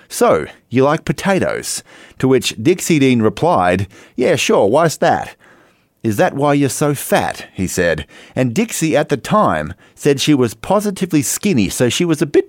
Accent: Australian